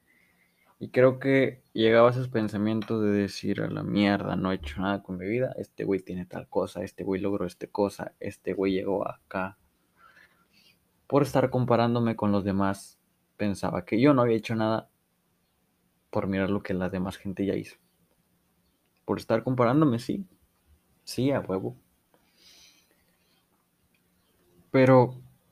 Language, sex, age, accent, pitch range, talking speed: Spanish, male, 20-39, Mexican, 95-115 Hz, 150 wpm